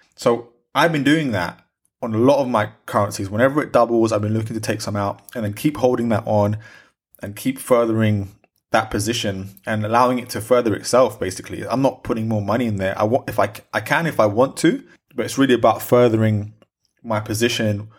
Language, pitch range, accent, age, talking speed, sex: English, 105-125 Hz, British, 20-39, 210 wpm, male